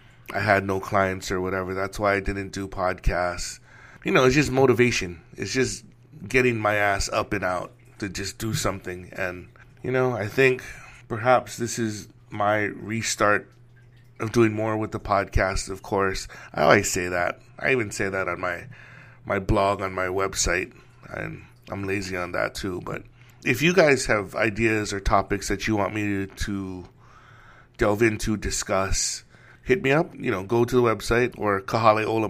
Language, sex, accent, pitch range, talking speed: English, male, American, 100-120 Hz, 180 wpm